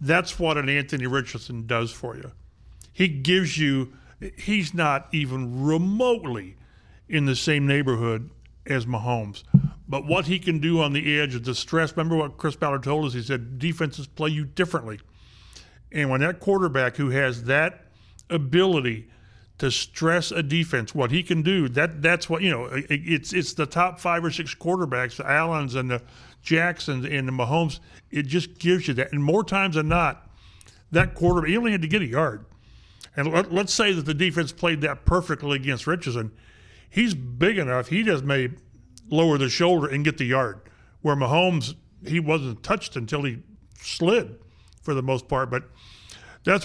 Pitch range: 125-170 Hz